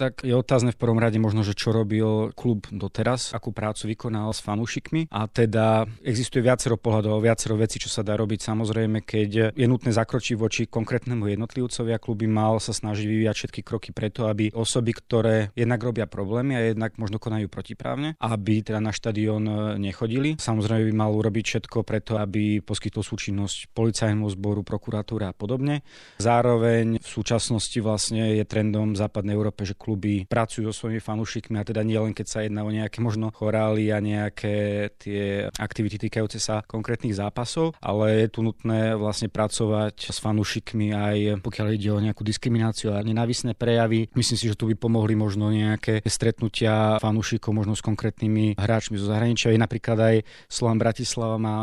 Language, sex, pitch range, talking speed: Slovak, male, 105-115 Hz, 175 wpm